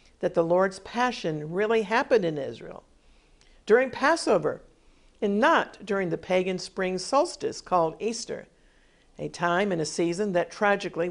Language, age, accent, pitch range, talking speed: English, 50-69, American, 175-230 Hz, 140 wpm